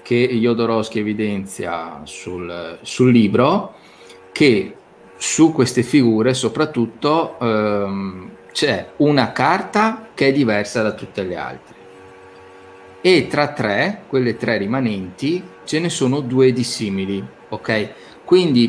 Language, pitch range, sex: Italian, 105-145 Hz, male